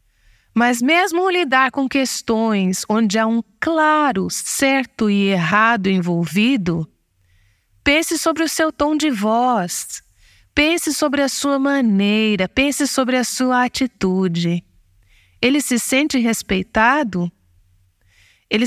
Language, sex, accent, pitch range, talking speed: Portuguese, female, Brazilian, 180-270 Hz, 115 wpm